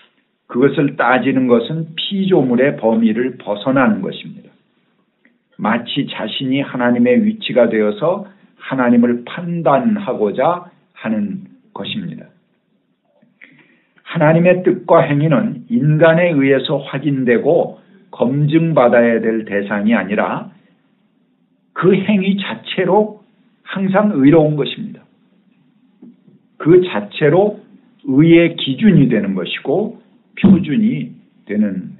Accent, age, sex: native, 50-69, male